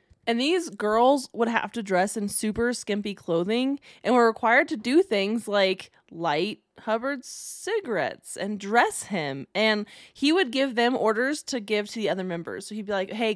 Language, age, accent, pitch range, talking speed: English, 20-39, American, 175-230 Hz, 185 wpm